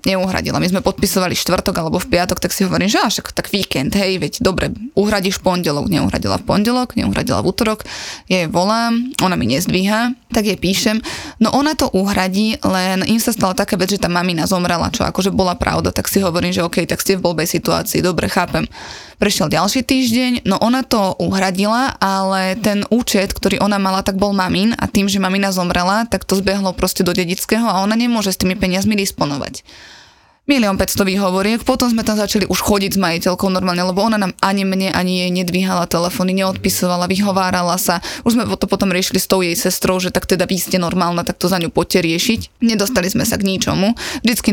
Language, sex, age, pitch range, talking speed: Slovak, female, 20-39, 185-215 Hz, 200 wpm